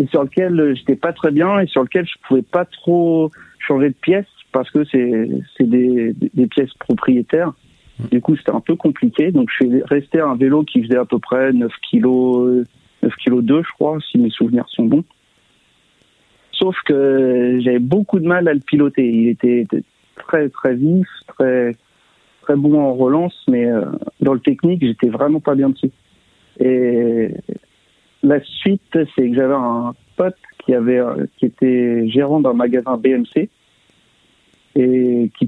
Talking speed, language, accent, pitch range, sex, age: 170 wpm, French, French, 125-175 Hz, male, 50-69